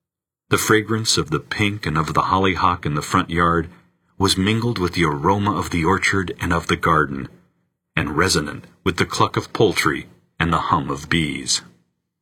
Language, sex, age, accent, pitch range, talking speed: English, male, 40-59, American, 85-110 Hz, 180 wpm